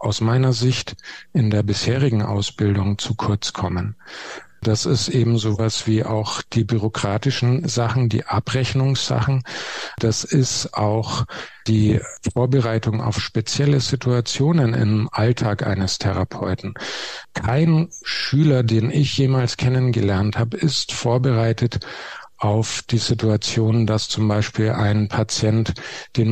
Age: 50-69